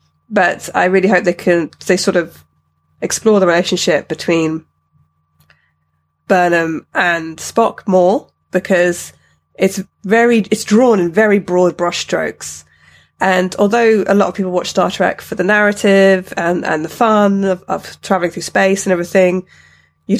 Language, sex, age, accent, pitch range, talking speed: English, female, 20-39, British, 165-195 Hz, 150 wpm